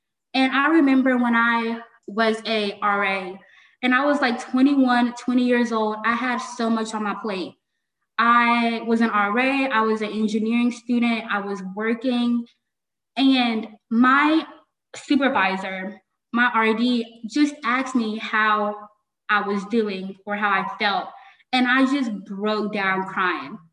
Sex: female